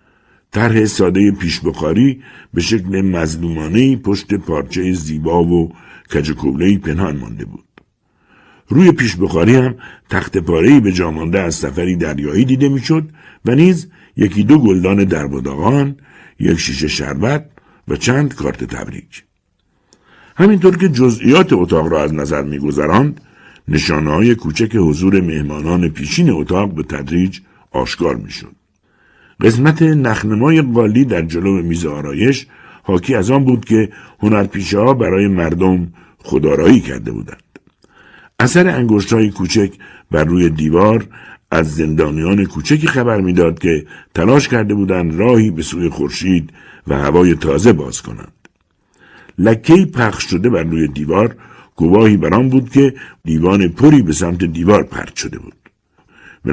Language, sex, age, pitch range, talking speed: Persian, male, 60-79, 80-120 Hz, 130 wpm